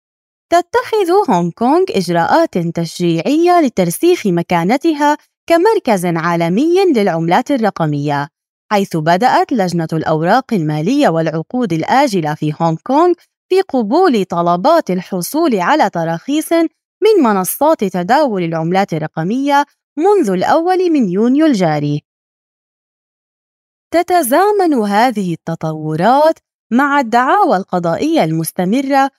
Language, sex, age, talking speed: Arabic, female, 20-39, 90 wpm